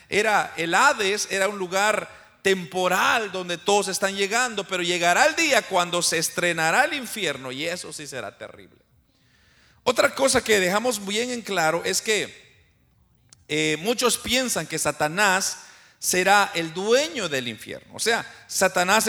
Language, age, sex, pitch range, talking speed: Spanish, 40-59, male, 170-225 Hz, 150 wpm